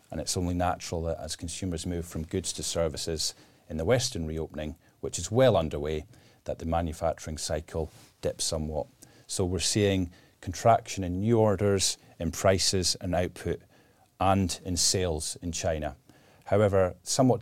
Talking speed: 150 wpm